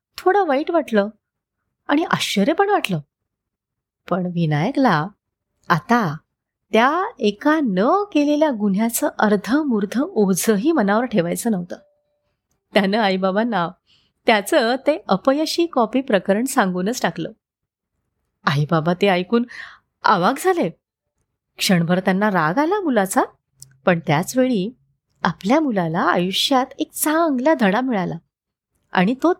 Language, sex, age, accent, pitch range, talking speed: Marathi, female, 30-49, native, 190-295 Hz, 110 wpm